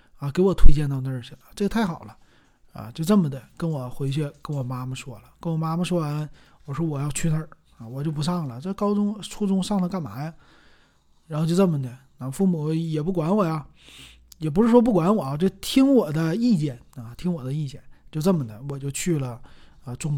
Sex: male